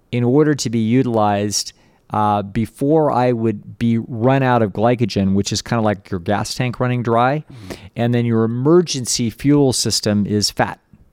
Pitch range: 105-125 Hz